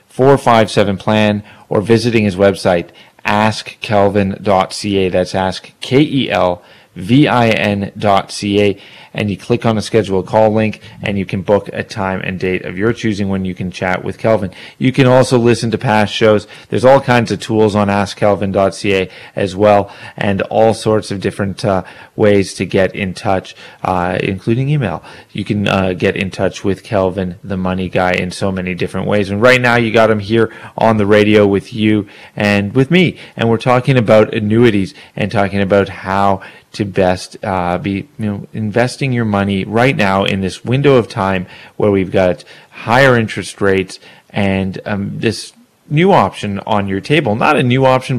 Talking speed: 180 wpm